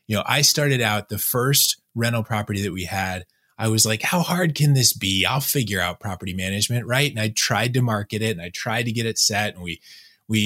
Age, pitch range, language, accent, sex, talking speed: 20-39, 105-125 Hz, English, American, male, 240 wpm